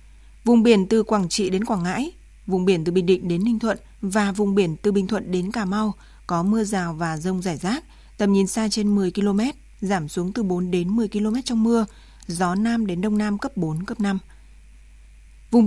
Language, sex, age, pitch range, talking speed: Vietnamese, female, 20-39, 180-220 Hz, 220 wpm